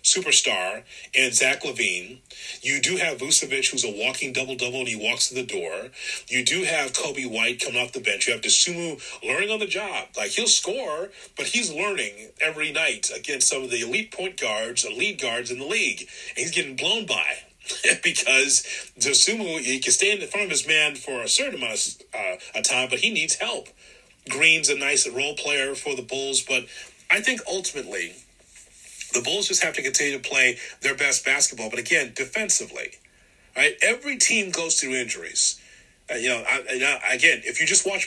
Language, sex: English, male